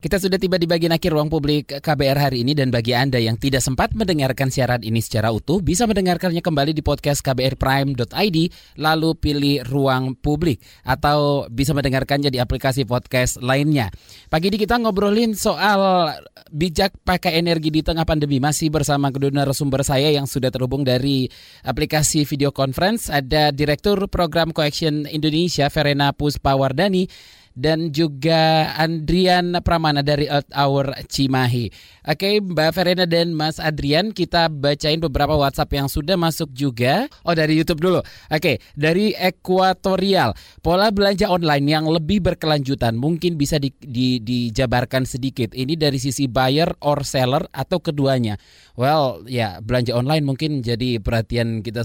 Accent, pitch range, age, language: native, 130-165 Hz, 20-39, Indonesian